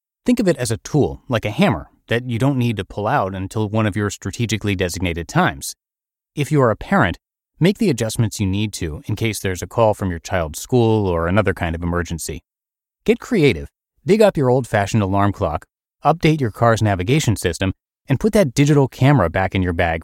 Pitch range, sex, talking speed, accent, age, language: 95-135 Hz, male, 210 wpm, American, 30-49, English